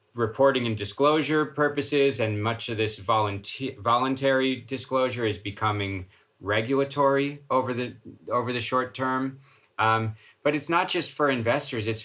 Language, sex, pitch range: English, male, 110-130 Hz